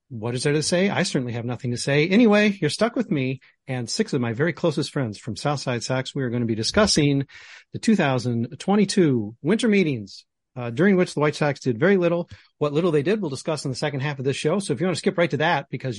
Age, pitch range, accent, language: 40-59, 130-170 Hz, American, English